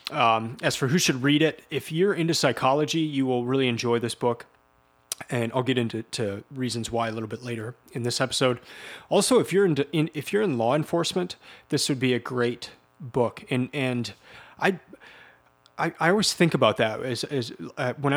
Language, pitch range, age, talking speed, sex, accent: English, 110-140 Hz, 30-49, 200 wpm, male, American